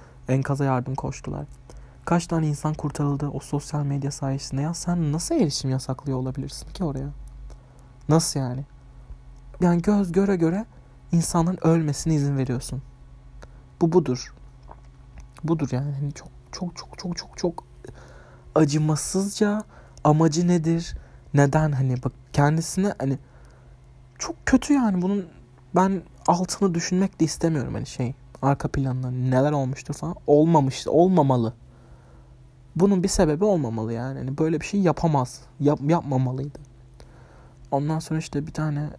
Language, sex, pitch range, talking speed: Turkish, male, 130-160 Hz, 125 wpm